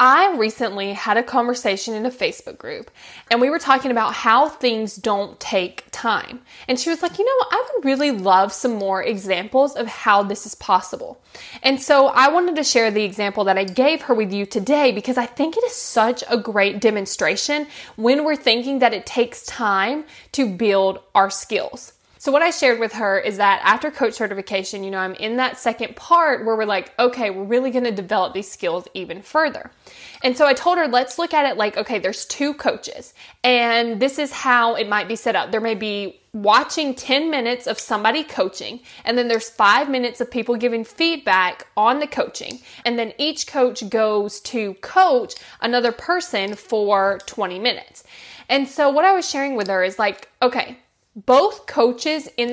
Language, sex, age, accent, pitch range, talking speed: English, female, 20-39, American, 210-280 Hz, 195 wpm